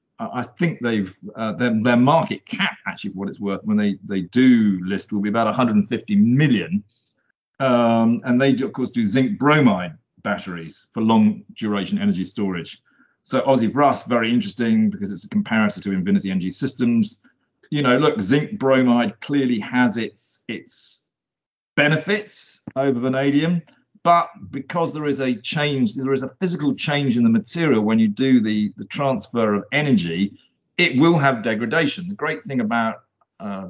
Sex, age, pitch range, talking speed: male, 40-59, 110-170 Hz, 165 wpm